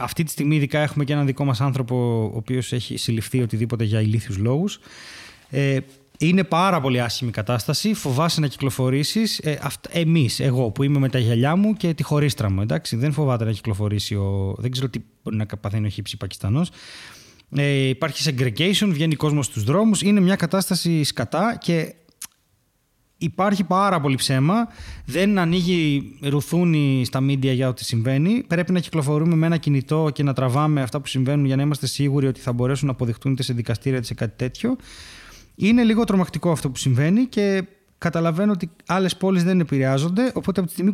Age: 20-39